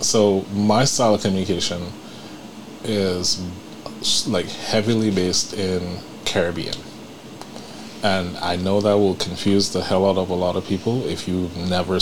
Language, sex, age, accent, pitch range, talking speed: English, male, 30-49, American, 90-110 Hz, 140 wpm